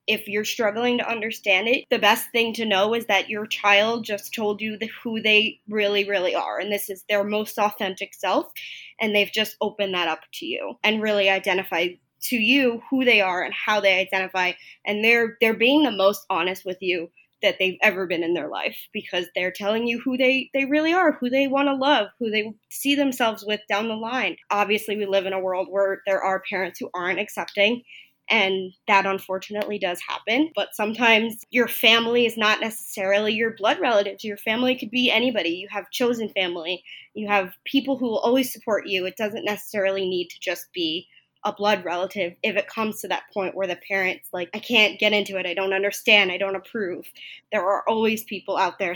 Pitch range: 195-225 Hz